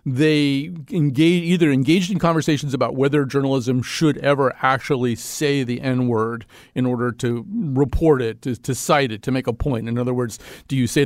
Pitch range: 115-150 Hz